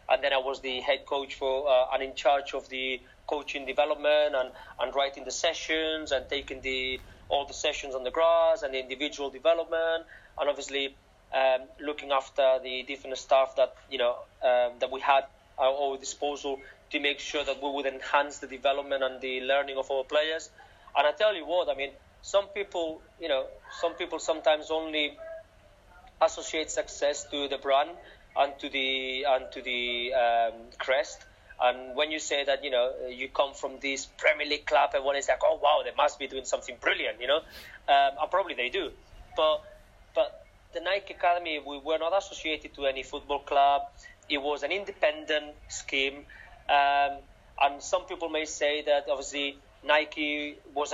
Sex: male